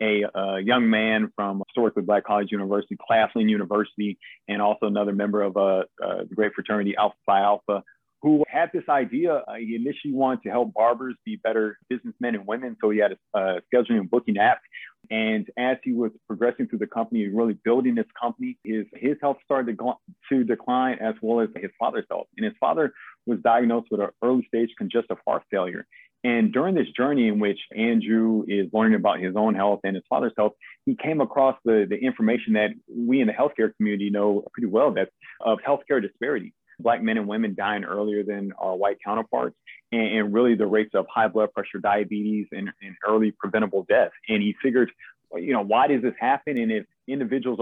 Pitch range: 105-125 Hz